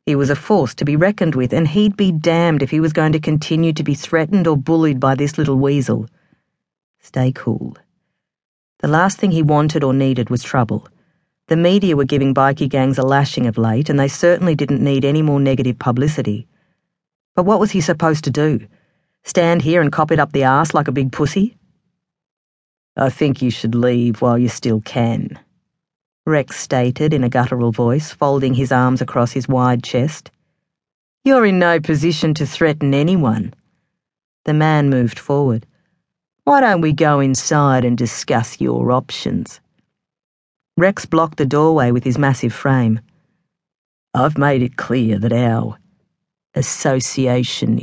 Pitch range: 130-170 Hz